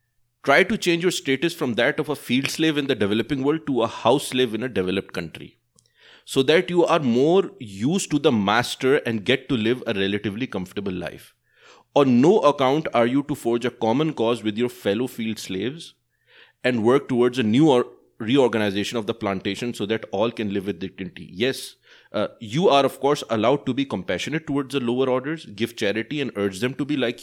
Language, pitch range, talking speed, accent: English, 105-135 Hz, 205 wpm, Indian